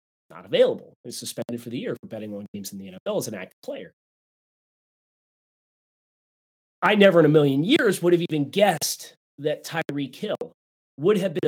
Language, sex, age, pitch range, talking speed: English, male, 30-49, 120-165 Hz, 180 wpm